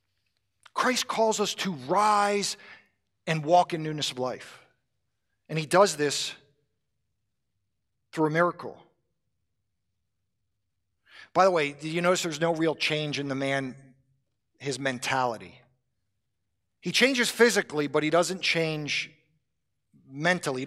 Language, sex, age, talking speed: English, male, 50-69, 120 wpm